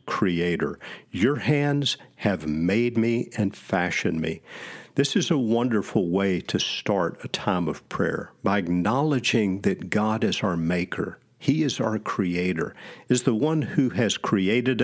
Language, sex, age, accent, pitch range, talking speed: English, male, 50-69, American, 95-130 Hz, 150 wpm